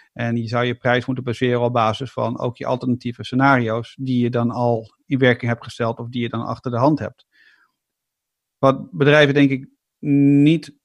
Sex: male